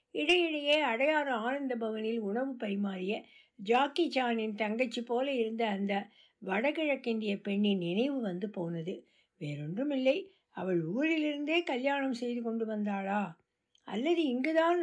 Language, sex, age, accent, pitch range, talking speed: Tamil, female, 60-79, native, 210-280 Hz, 100 wpm